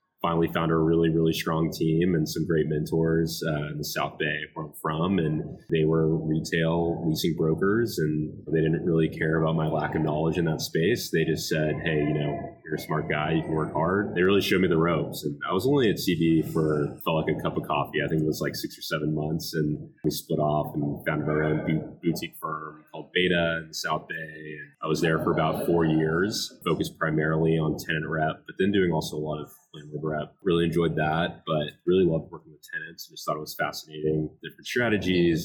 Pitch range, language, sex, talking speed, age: 75-80 Hz, English, male, 225 wpm, 30-49